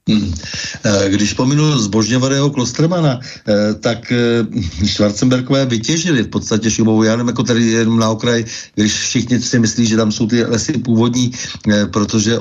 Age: 60-79